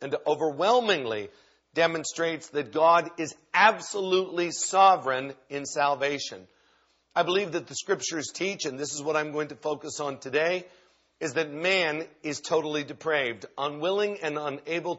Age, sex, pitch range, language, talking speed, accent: 50-69, male, 135-170 Hz, English, 135 wpm, American